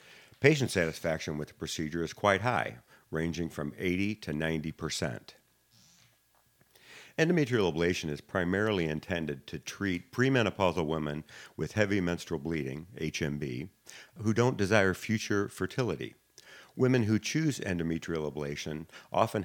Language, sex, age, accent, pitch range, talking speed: English, male, 50-69, American, 80-100 Hz, 120 wpm